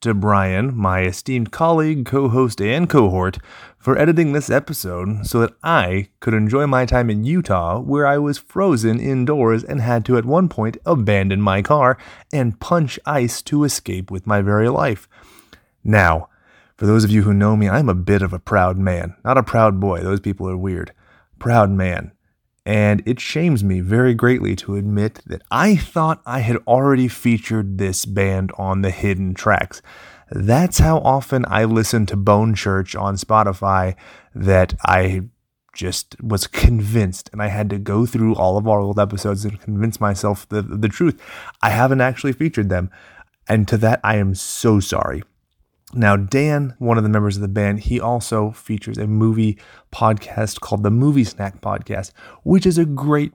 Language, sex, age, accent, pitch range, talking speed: English, male, 30-49, American, 95-120 Hz, 180 wpm